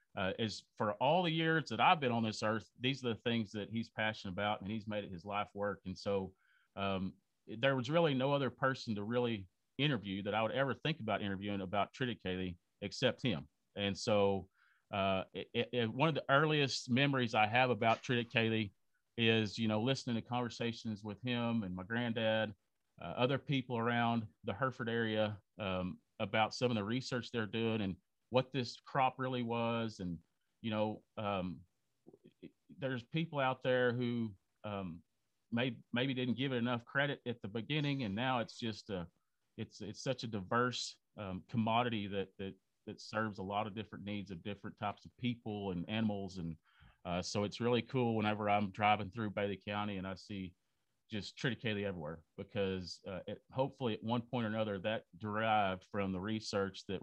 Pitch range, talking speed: 100-120 Hz, 185 wpm